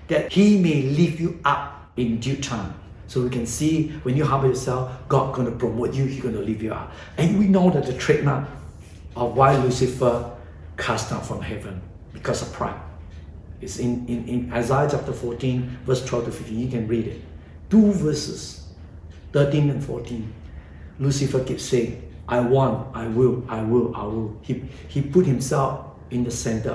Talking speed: 180 wpm